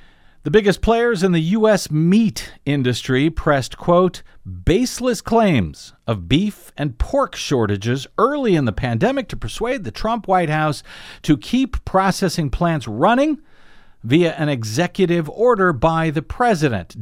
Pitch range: 125-190 Hz